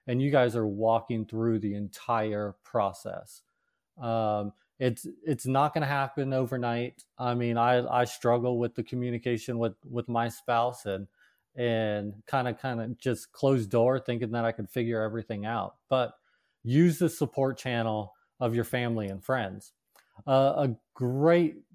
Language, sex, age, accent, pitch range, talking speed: English, male, 30-49, American, 110-135 Hz, 155 wpm